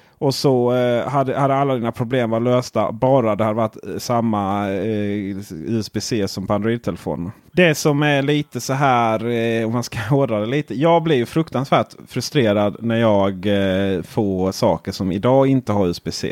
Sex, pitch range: male, 100-130 Hz